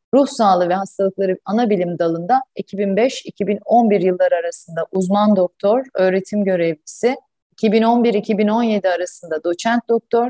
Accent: native